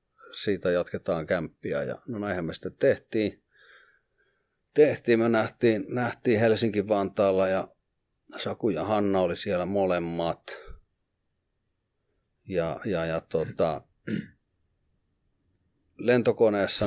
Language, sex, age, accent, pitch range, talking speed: Finnish, male, 30-49, native, 90-115 Hz, 95 wpm